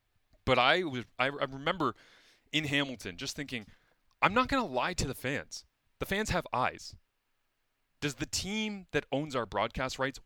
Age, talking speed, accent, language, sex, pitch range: 30-49, 170 wpm, American, English, male, 100-150 Hz